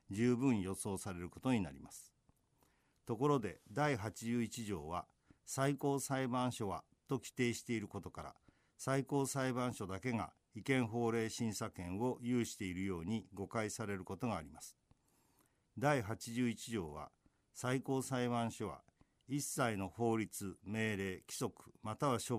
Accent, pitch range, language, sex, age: native, 100-130 Hz, Japanese, male, 50-69